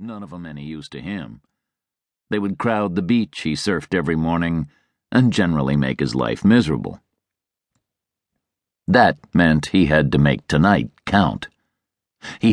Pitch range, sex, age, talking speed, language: 75-110 Hz, male, 50-69, 150 wpm, English